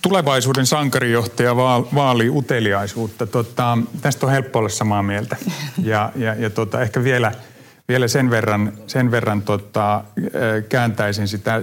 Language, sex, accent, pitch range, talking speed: Finnish, male, native, 110-130 Hz, 105 wpm